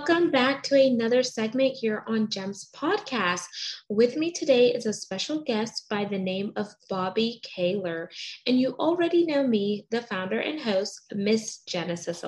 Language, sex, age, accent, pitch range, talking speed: English, female, 20-39, American, 195-260 Hz, 160 wpm